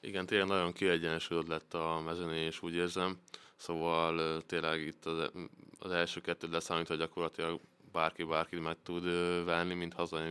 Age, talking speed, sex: 20-39, 150 wpm, male